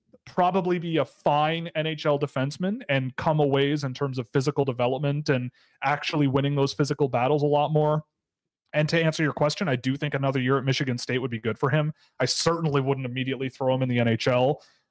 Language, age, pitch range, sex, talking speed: English, 30-49, 125-155 Hz, male, 205 wpm